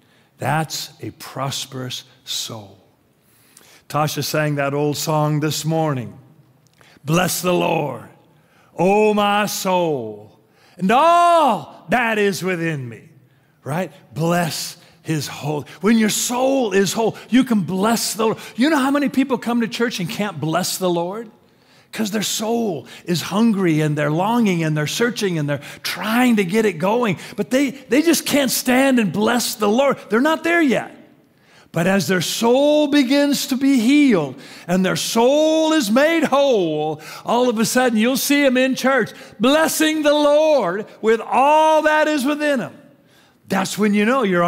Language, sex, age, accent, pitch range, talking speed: English, male, 40-59, American, 155-255 Hz, 160 wpm